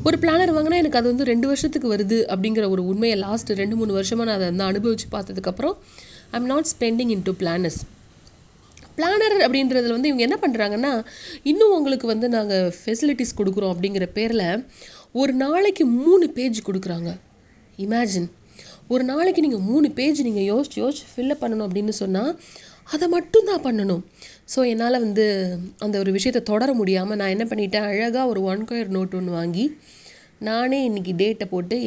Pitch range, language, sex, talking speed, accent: 190-260 Hz, Tamil, female, 160 wpm, native